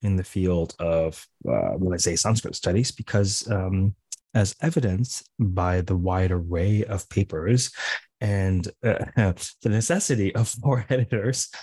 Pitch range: 90-120 Hz